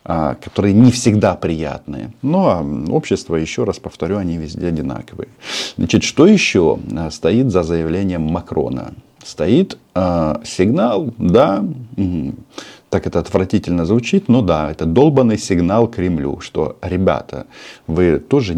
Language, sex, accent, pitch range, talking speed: Russian, male, native, 80-100 Hz, 115 wpm